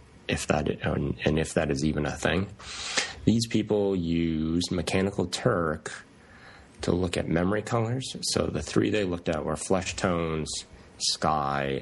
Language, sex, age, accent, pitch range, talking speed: English, male, 30-49, American, 70-90 Hz, 145 wpm